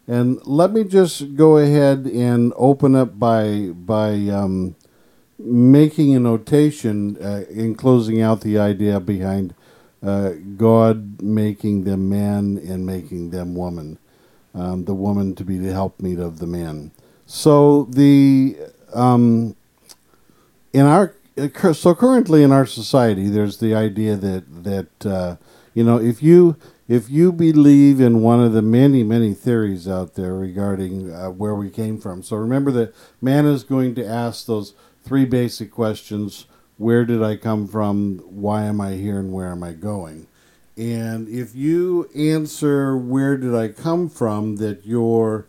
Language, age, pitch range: English, 50-69, 100-130 Hz